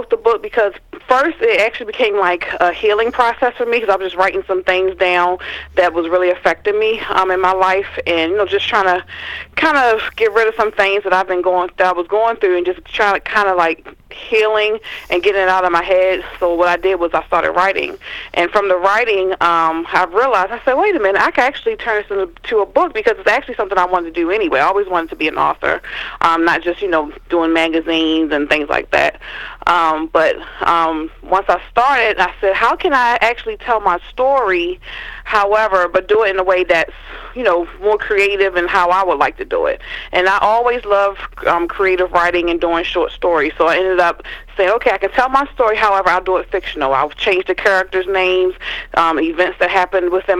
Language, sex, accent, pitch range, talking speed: English, female, American, 180-225 Hz, 230 wpm